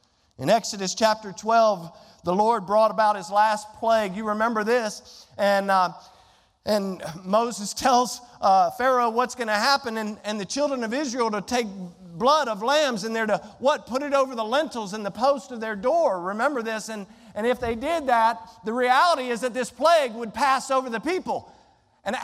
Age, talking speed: 50-69, 190 wpm